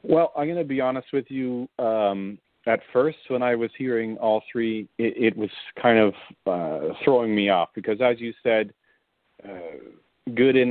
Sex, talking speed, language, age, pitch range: male, 180 wpm, English, 40-59, 100-120 Hz